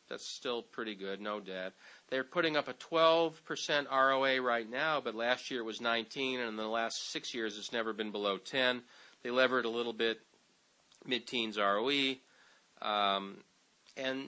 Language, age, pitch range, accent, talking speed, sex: English, 40-59, 110-145 Hz, American, 170 wpm, male